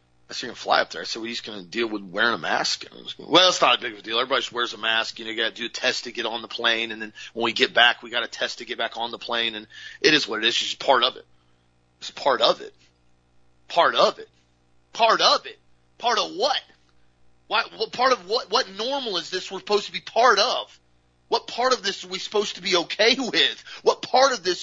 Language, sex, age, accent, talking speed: English, male, 40-59, American, 285 wpm